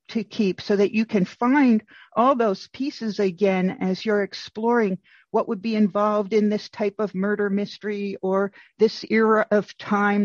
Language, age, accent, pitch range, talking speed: English, 50-69, American, 195-225 Hz, 170 wpm